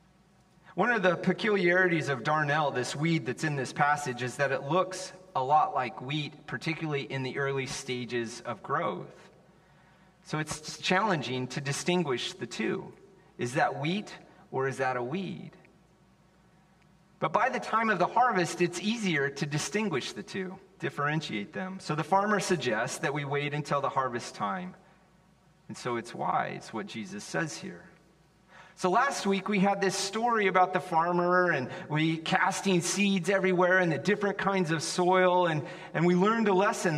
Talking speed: 165 wpm